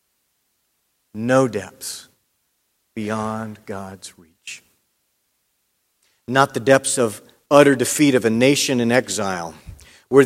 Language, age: English, 50-69